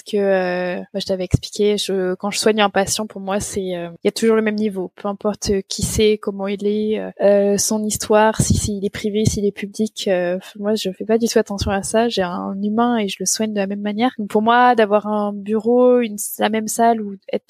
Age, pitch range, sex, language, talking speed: 20-39, 200-225 Hz, female, French, 255 wpm